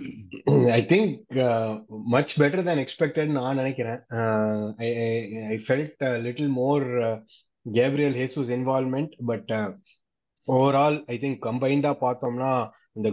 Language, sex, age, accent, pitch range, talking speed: Tamil, male, 20-39, native, 110-130 Hz, 130 wpm